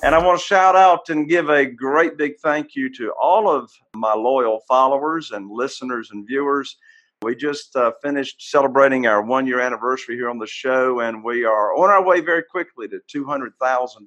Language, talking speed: English, 190 wpm